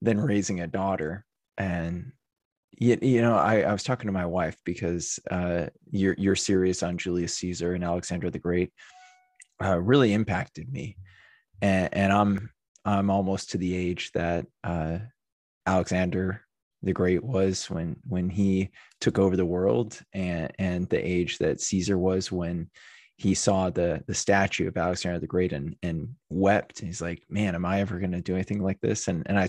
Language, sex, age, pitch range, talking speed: English, male, 20-39, 90-105 Hz, 180 wpm